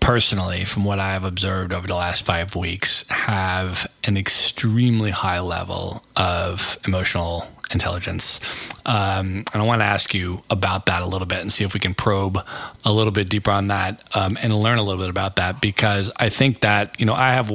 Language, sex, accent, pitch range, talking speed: English, male, American, 95-115 Hz, 200 wpm